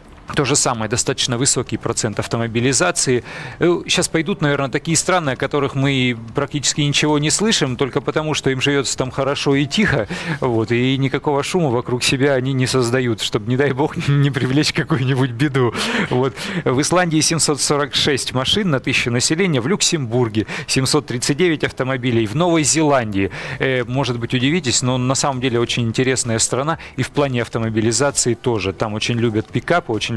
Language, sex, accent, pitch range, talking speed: Russian, male, native, 115-145 Hz, 155 wpm